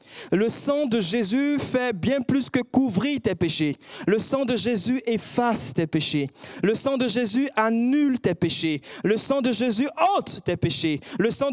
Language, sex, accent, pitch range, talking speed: French, male, French, 155-235 Hz, 175 wpm